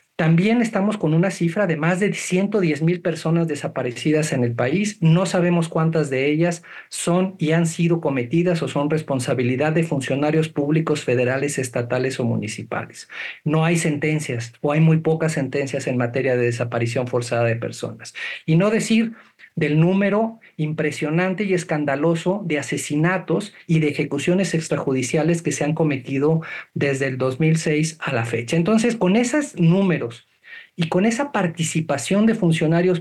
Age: 50-69